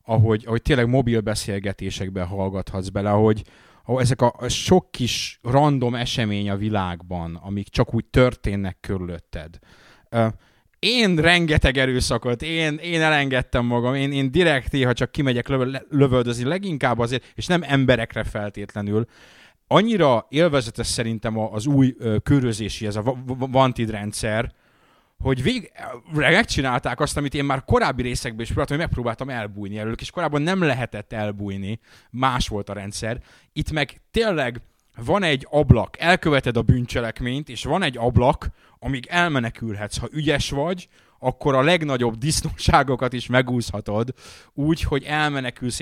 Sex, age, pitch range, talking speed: male, 30-49, 110-140 Hz, 135 wpm